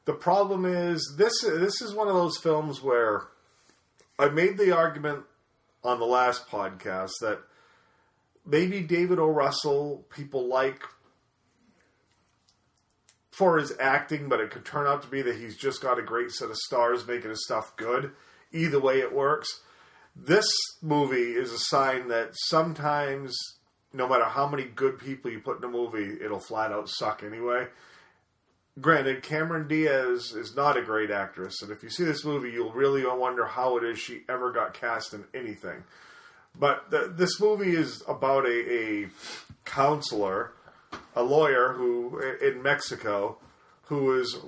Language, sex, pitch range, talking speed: English, male, 120-160 Hz, 160 wpm